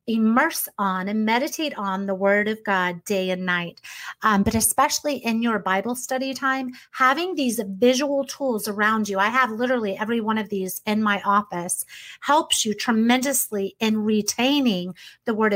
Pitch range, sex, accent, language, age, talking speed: 200-260 Hz, female, American, English, 30-49, 165 wpm